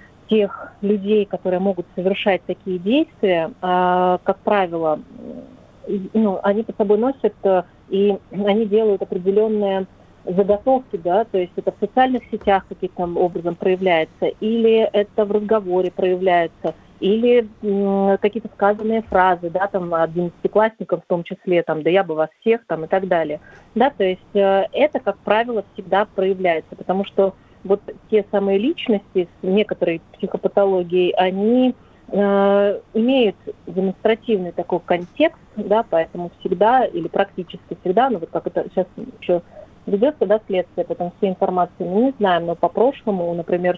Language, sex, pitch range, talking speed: Russian, female, 180-210 Hz, 140 wpm